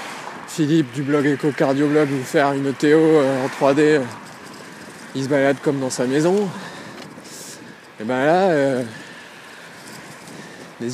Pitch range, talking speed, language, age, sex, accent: 135-165 Hz, 135 wpm, French, 20-39, male, French